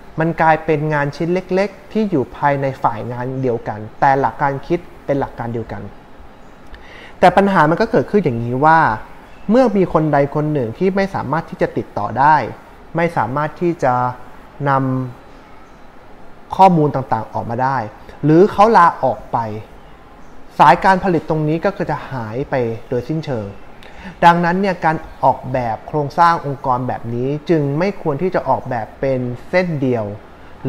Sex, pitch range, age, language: male, 125-165 Hz, 20-39, Thai